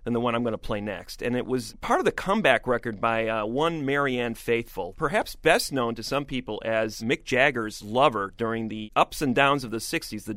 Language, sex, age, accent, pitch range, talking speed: English, male, 30-49, American, 115-145 Hz, 230 wpm